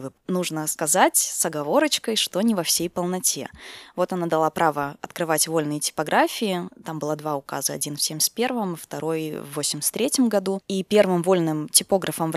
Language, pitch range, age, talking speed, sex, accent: Russian, 150-190 Hz, 20-39, 155 wpm, female, native